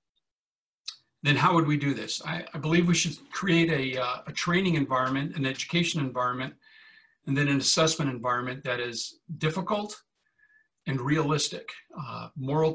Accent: American